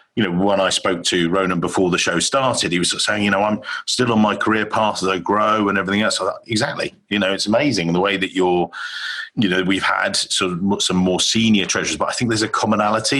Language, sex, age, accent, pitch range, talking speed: English, male, 40-59, British, 90-110 Hz, 250 wpm